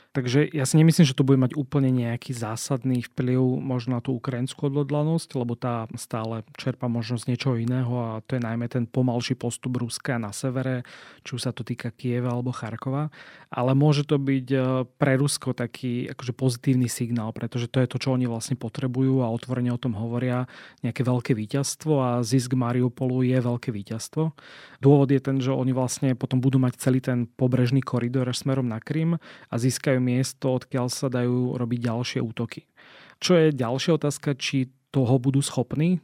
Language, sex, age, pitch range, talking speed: Slovak, male, 30-49, 120-135 Hz, 175 wpm